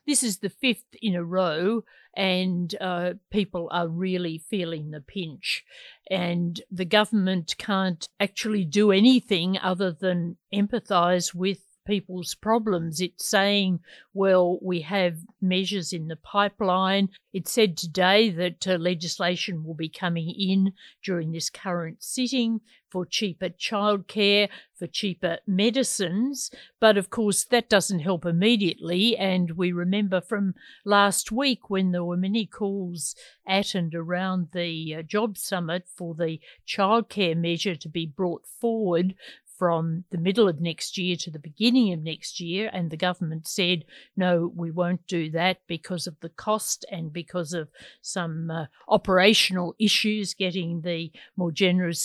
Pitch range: 175-205 Hz